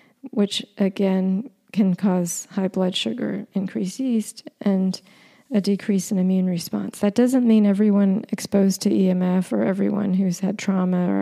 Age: 40-59